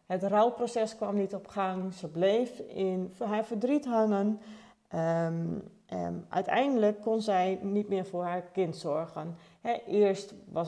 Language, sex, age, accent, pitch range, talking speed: Dutch, female, 40-59, Dutch, 185-235 Hz, 145 wpm